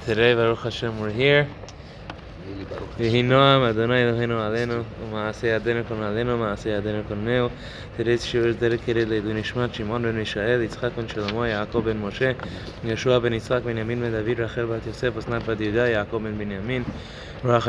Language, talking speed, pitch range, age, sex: English, 165 wpm, 110-135 Hz, 20-39, male